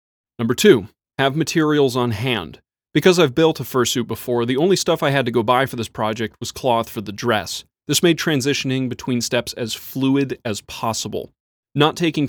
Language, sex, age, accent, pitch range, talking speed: English, male, 30-49, American, 115-145 Hz, 190 wpm